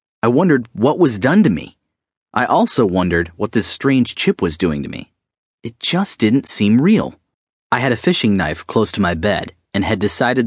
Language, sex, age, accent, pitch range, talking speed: English, male, 30-49, American, 95-145 Hz, 200 wpm